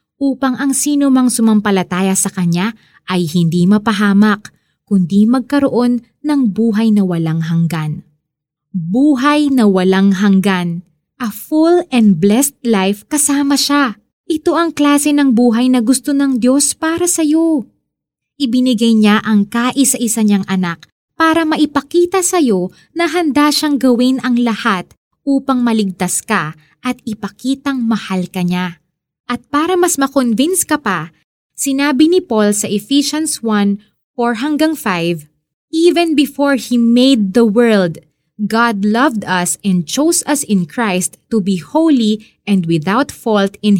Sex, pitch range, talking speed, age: female, 200-285 Hz, 135 wpm, 20-39